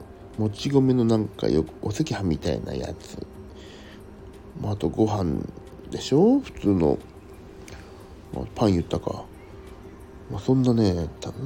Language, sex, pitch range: Japanese, male, 95-120 Hz